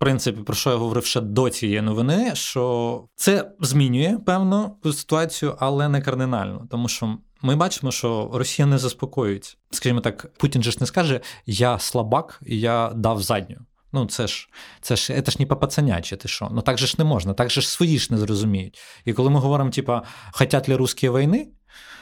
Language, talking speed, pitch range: Ukrainian, 190 wpm, 105-135 Hz